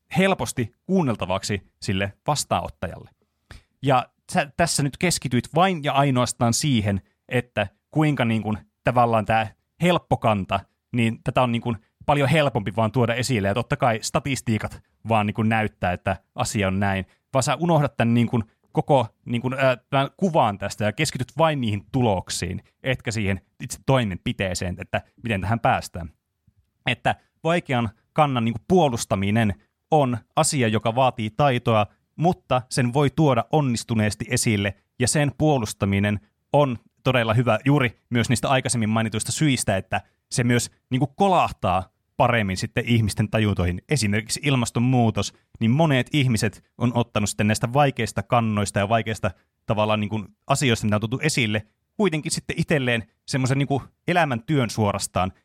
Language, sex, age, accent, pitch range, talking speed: Finnish, male, 30-49, native, 105-135 Hz, 140 wpm